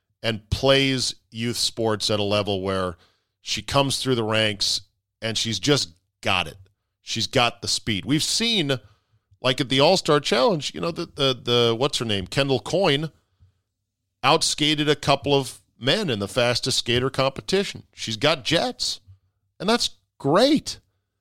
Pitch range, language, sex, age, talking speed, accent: 100-135 Hz, English, male, 40-59, 155 wpm, American